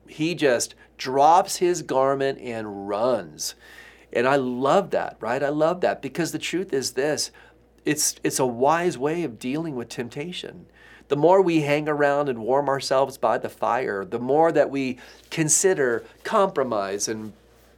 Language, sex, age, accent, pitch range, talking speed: English, male, 40-59, American, 120-155 Hz, 160 wpm